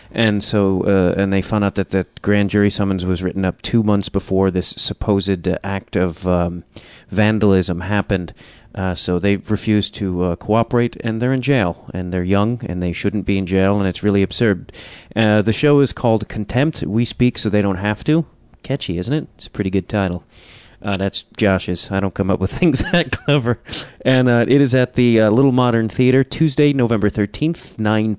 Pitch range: 95-115 Hz